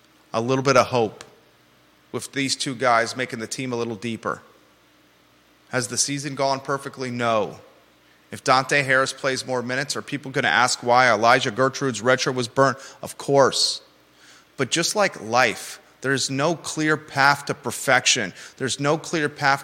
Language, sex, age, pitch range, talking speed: English, male, 30-49, 130-155 Hz, 165 wpm